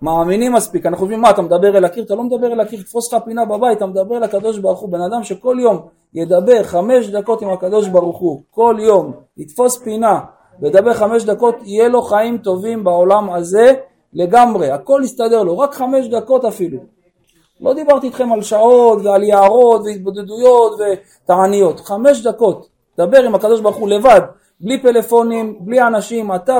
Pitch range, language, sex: 195-255 Hz, Hebrew, male